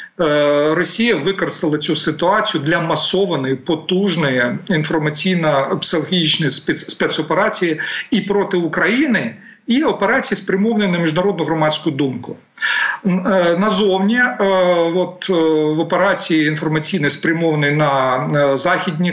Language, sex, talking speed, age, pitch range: Ukrainian, male, 85 wpm, 40-59, 150-185 Hz